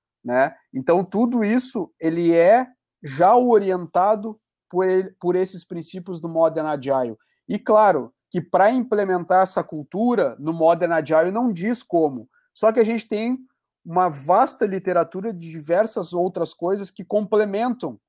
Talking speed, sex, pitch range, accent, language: 135 wpm, male, 155-205 Hz, Brazilian, Portuguese